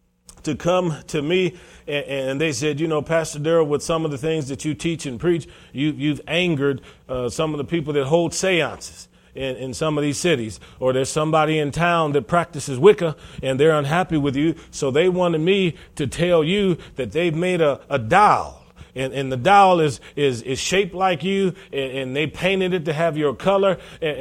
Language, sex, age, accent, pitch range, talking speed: English, male, 40-59, American, 135-180 Hz, 210 wpm